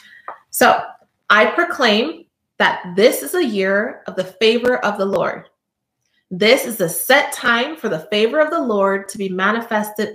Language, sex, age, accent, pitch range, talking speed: English, female, 30-49, American, 190-245 Hz, 165 wpm